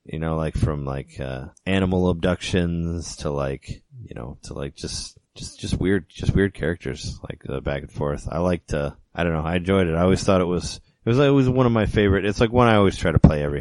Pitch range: 75-95 Hz